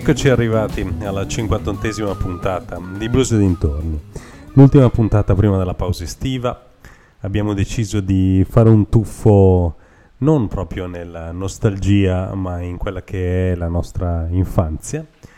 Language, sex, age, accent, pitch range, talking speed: Italian, male, 30-49, native, 90-110 Hz, 130 wpm